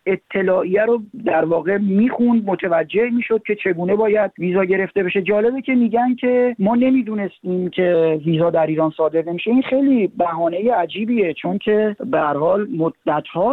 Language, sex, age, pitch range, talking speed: Persian, male, 40-59, 155-205 Hz, 140 wpm